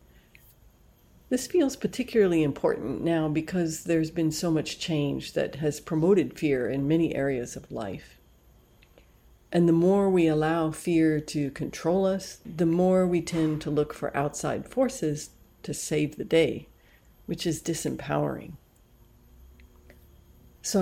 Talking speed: 135 wpm